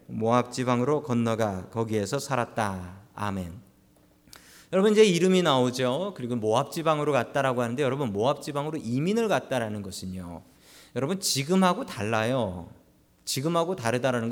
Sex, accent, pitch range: male, native, 120-195 Hz